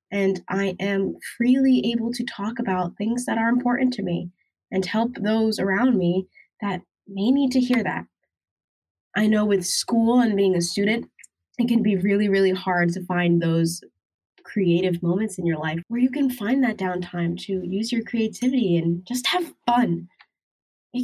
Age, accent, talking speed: 10-29, American, 175 wpm